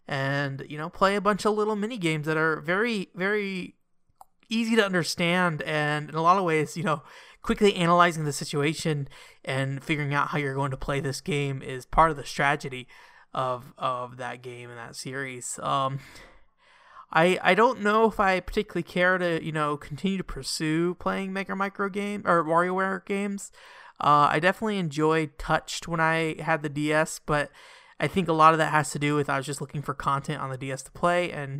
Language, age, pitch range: English, 20-39, 140-185 Hz